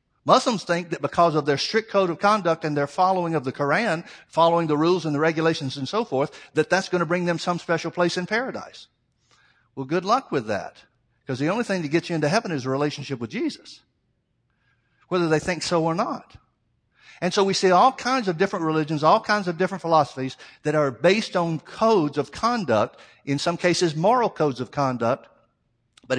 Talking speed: 205 wpm